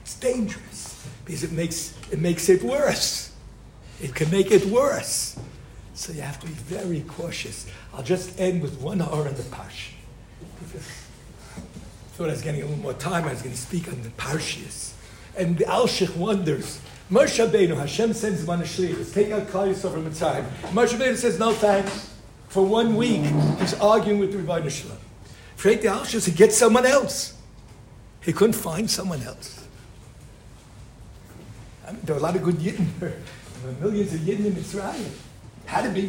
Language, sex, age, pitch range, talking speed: English, male, 60-79, 140-195 Hz, 175 wpm